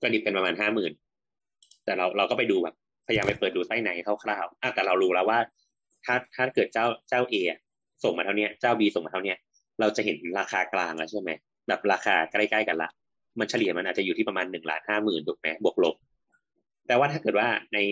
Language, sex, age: Thai, male, 20-39